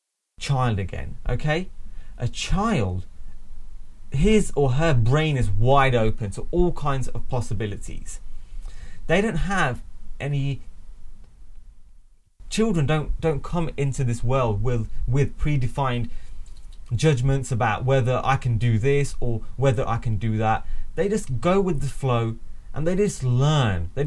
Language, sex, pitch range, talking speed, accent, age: English, male, 105-145 Hz, 135 wpm, British, 20-39